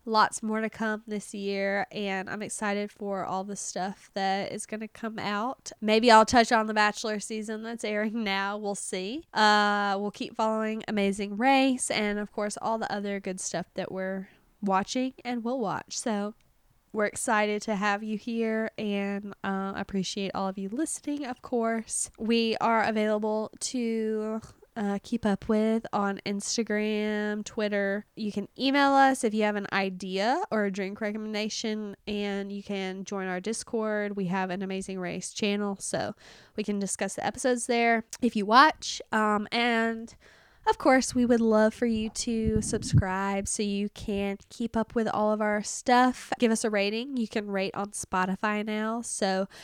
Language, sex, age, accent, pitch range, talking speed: English, female, 10-29, American, 200-225 Hz, 175 wpm